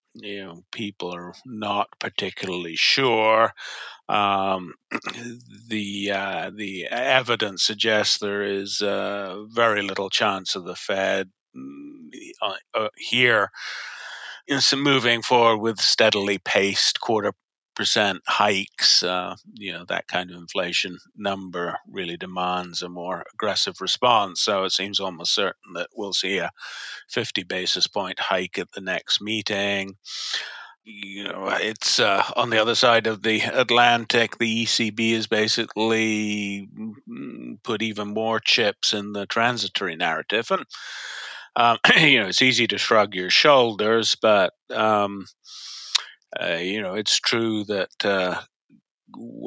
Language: English